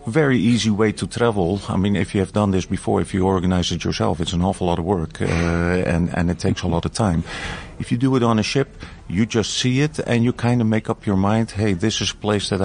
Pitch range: 90-105 Hz